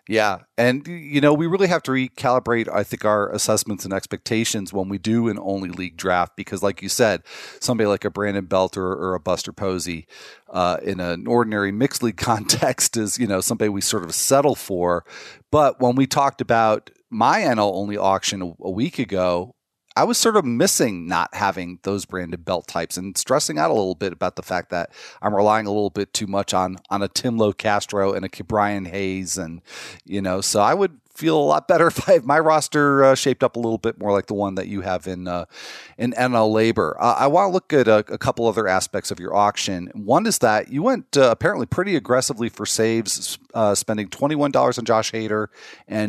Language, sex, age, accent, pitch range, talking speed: English, male, 40-59, American, 95-120 Hz, 215 wpm